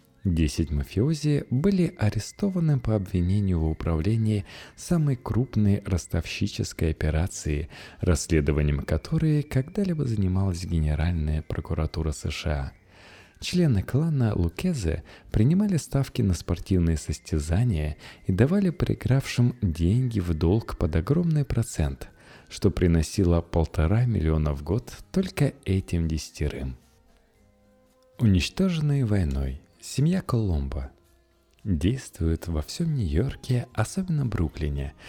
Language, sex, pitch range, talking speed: Russian, male, 80-120 Hz, 95 wpm